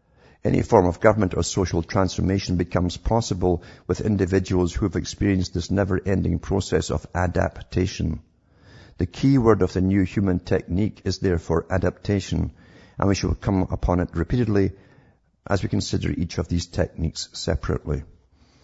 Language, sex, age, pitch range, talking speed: English, male, 50-69, 85-105 Hz, 145 wpm